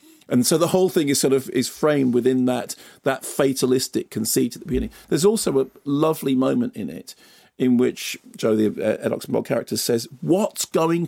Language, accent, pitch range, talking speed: English, British, 125-150 Hz, 190 wpm